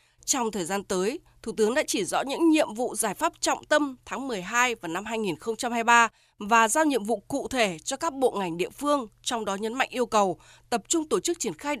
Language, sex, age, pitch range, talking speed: Vietnamese, female, 20-39, 215-295 Hz, 230 wpm